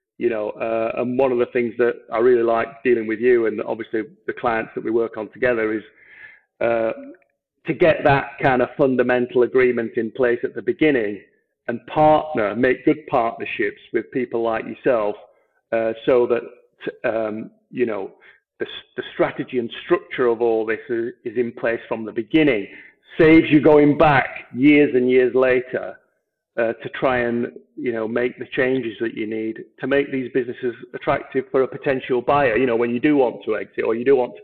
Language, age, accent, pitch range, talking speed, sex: English, 50-69, British, 115-180 Hz, 190 wpm, male